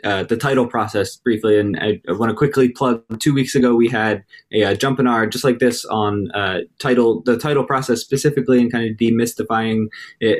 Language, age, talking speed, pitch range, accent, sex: English, 20-39, 215 wpm, 105-130 Hz, American, male